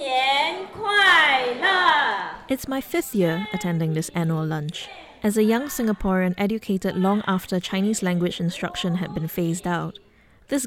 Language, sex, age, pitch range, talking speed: English, female, 20-39, 170-220 Hz, 130 wpm